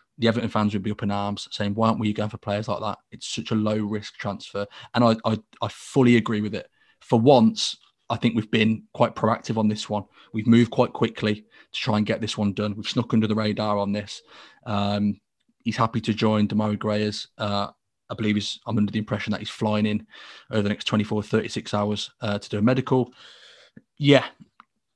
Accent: British